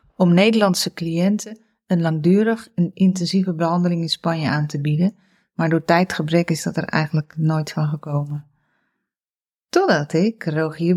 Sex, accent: female, Dutch